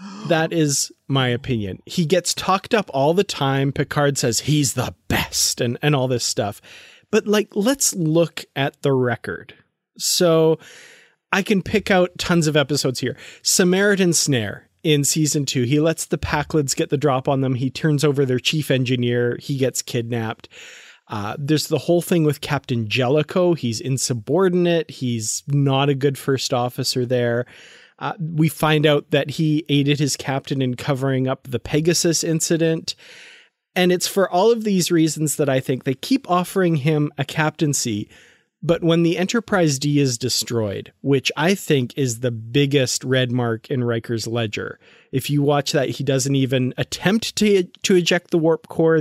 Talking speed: 170 wpm